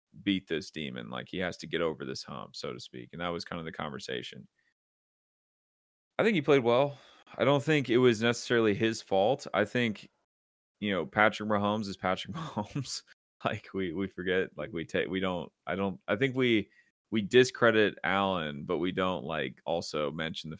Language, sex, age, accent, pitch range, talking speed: English, male, 30-49, American, 90-110 Hz, 195 wpm